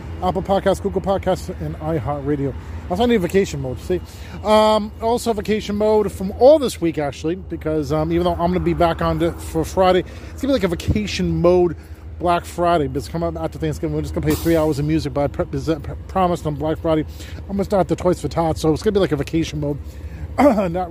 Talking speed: 240 wpm